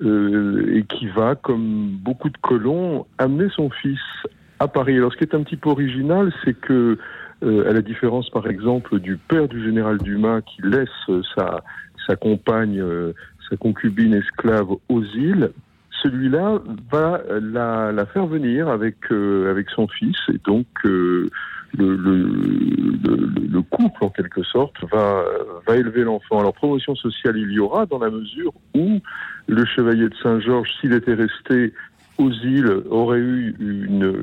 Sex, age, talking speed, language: male, 60-79, 165 wpm, French